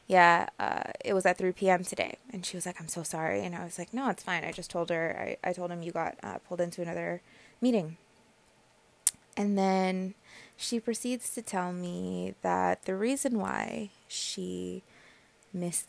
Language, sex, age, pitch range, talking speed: English, female, 20-39, 170-190 Hz, 190 wpm